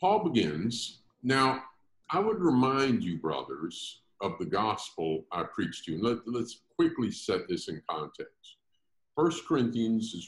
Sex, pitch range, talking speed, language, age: male, 85-115 Hz, 140 wpm, English, 50-69